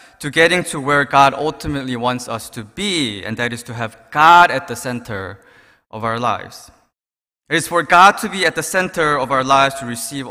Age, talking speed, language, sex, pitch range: 20-39, 210 wpm, English, male, 115-175 Hz